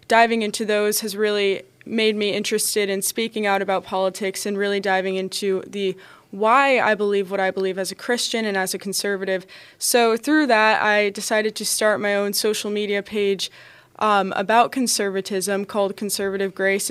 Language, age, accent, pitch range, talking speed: English, 20-39, American, 195-220 Hz, 175 wpm